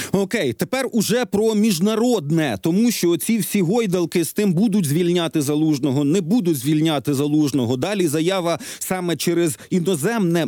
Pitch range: 155-195 Hz